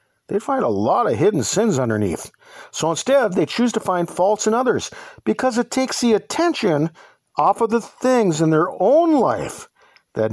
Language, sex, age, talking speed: English, male, 50-69, 180 wpm